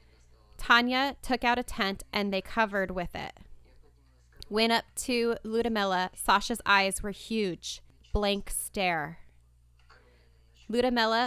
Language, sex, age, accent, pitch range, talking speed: English, female, 20-39, American, 160-210 Hz, 110 wpm